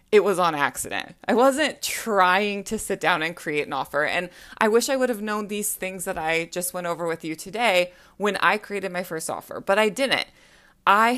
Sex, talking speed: female, 215 wpm